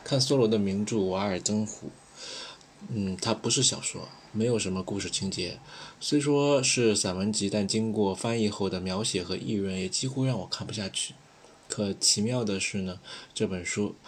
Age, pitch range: 20-39, 95-120 Hz